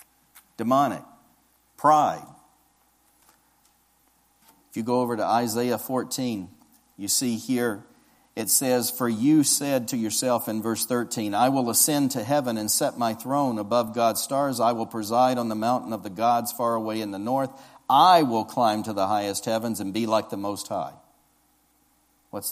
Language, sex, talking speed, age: English, male, 165 wpm, 50-69